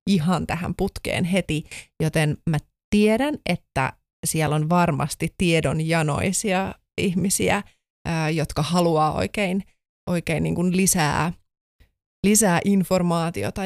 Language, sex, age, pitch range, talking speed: Finnish, female, 30-49, 155-185 Hz, 90 wpm